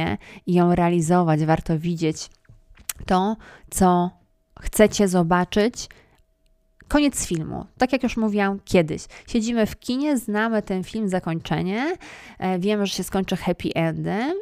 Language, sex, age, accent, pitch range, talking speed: Polish, female, 20-39, native, 170-220 Hz, 120 wpm